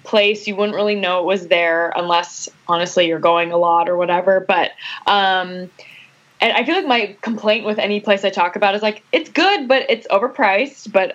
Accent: American